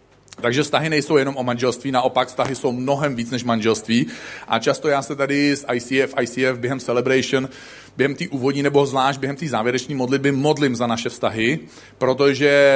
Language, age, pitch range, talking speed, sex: Czech, 40-59, 125-145 Hz, 175 wpm, male